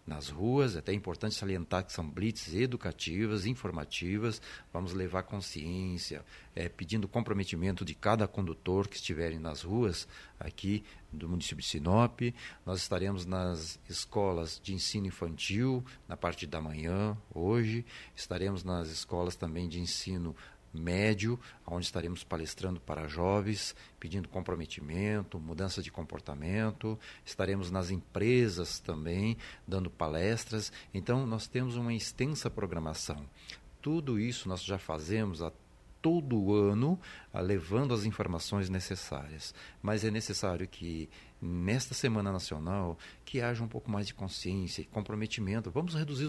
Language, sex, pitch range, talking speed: Portuguese, male, 85-110 Hz, 130 wpm